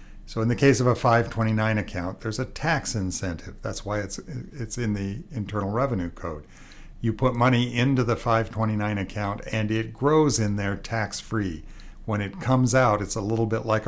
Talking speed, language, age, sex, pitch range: 185 wpm, English, 50-69, male, 95-125 Hz